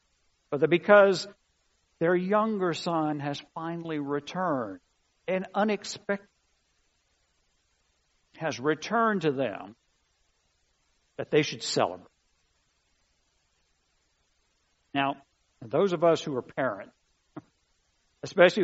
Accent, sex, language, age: American, male, English, 60-79